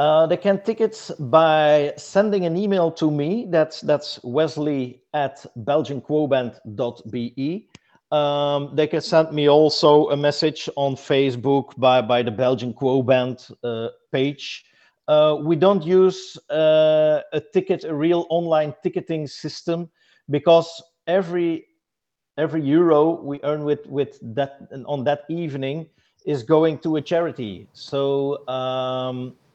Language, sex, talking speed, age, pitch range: English, male, 130 wpm, 50-69, 125-155 Hz